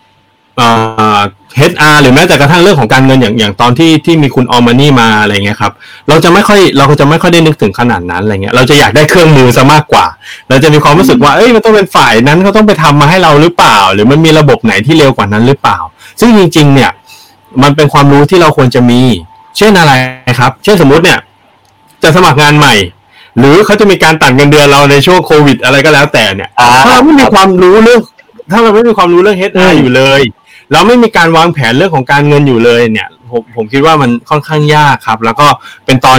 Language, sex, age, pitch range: Thai, male, 20-39, 120-160 Hz